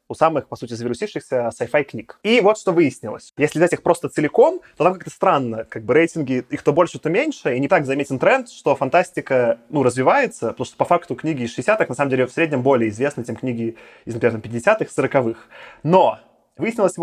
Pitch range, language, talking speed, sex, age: 130-170 Hz, Russian, 210 wpm, male, 20-39